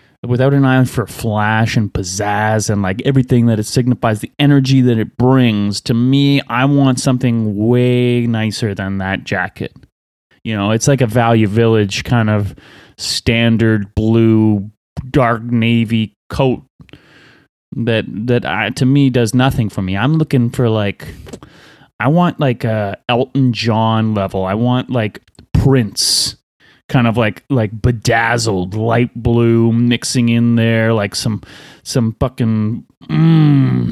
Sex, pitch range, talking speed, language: male, 110-130 Hz, 145 wpm, English